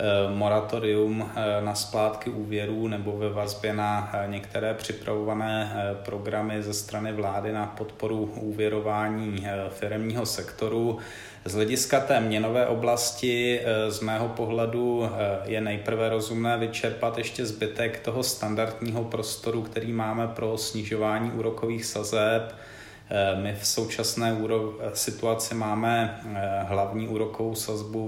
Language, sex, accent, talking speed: Czech, male, native, 105 wpm